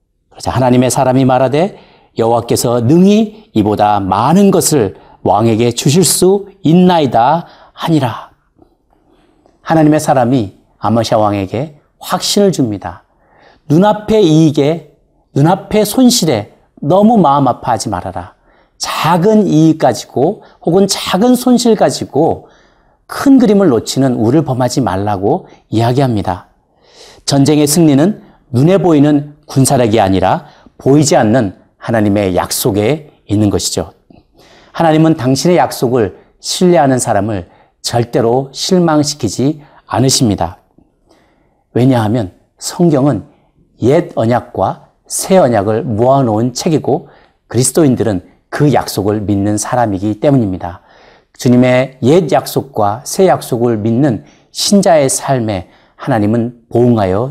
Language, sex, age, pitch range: Korean, male, 40-59, 110-160 Hz